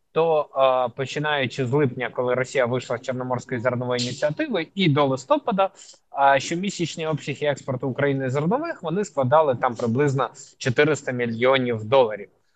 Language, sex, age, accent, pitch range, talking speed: Ukrainian, male, 20-39, native, 130-160 Hz, 135 wpm